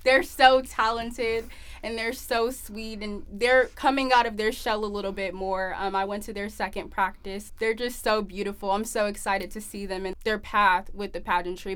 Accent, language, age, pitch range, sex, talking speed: American, English, 10-29, 195-215 Hz, female, 210 wpm